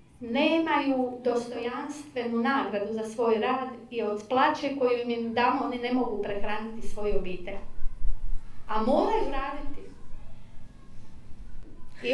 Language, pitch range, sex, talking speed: Croatian, 200-255 Hz, female, 110 wpm